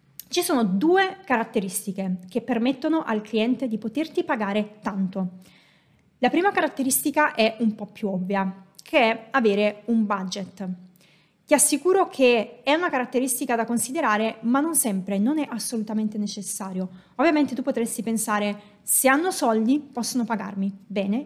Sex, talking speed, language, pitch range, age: female, 140 wpm, Italian, 200-245 Hz, 20-39